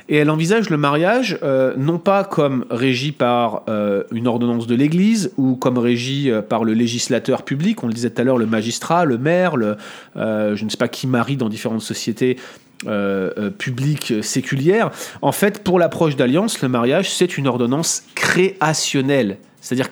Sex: male